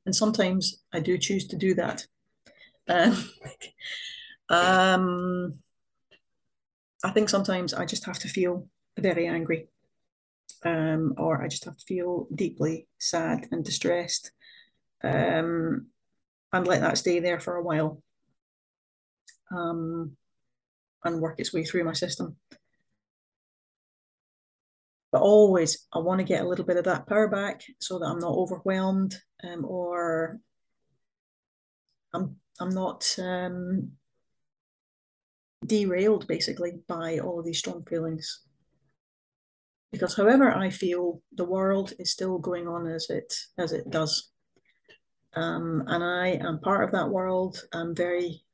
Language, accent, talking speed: English, British, 130 wpm